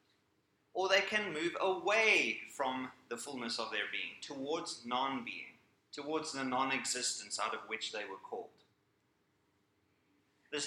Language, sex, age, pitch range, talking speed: English, male, 30-49, 105-140 Hz, 130 wpm